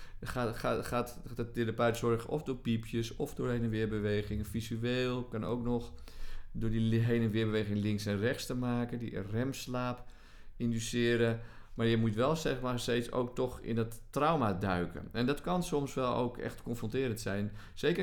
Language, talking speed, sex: Dutch, 185 wpm, male